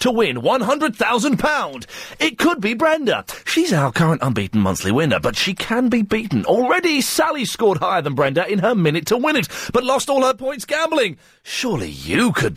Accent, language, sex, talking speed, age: British, English, male, 185 wpm, 30-49